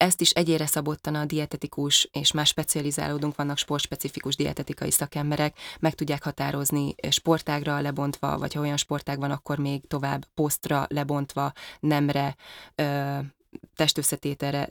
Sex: female